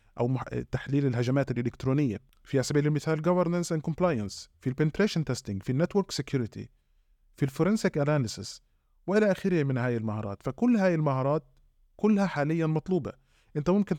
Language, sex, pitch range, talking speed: Arabic, male, 130-175 Hz, 135 wpm